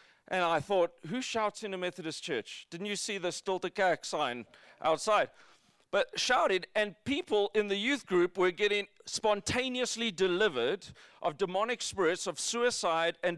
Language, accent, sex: English, South African, male